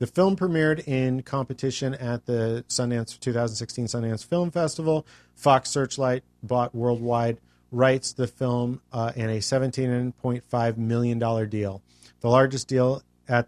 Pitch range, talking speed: 110-130 Hz, 130 wpm